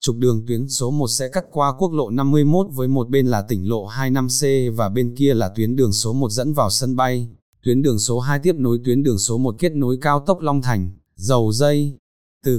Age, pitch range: 20-39, 115-145 Hz